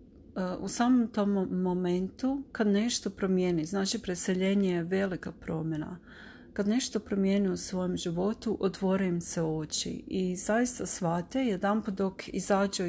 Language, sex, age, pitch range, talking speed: Croatian, female, 40-59, 180-215 Hz, 125 wpm